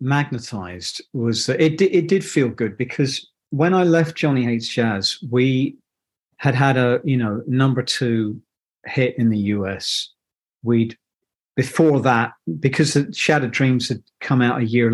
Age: 40-59